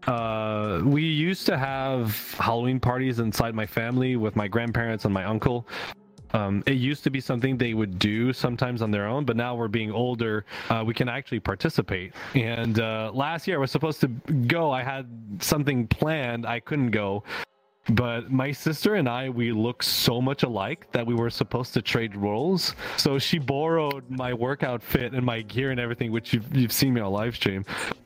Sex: male